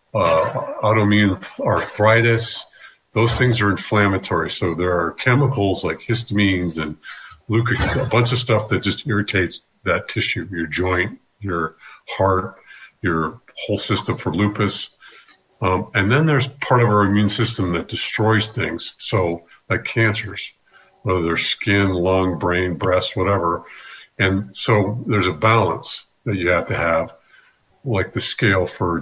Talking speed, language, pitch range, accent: 145 wpm, English, 90-115 Hz, American